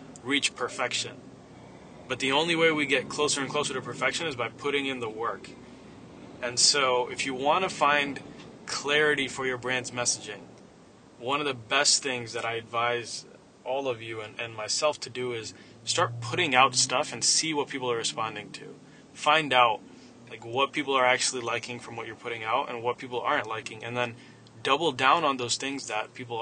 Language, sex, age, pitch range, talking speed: English, male, 20-39, 120-145 Hz, 195 wpm